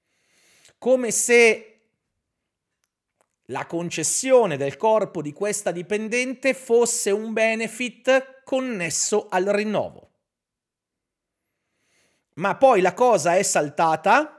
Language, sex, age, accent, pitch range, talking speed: Italian, male, 40-59, native, 150-230 Hz, 90 wpm